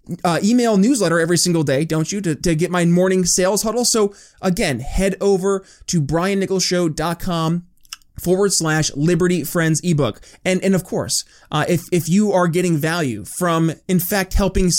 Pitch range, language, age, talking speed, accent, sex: 165-200 Hz, English, 20-39, 175 wpm, American, male